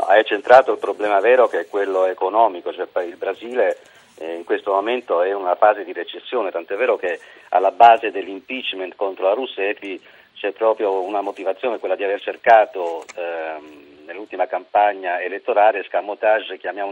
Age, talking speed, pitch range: 50-69, 150 wpm, 95-125 Hz